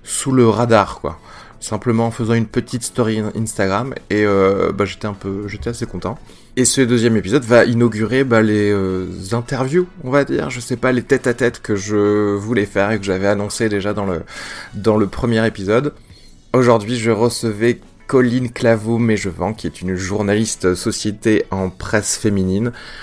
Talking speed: 175 wpm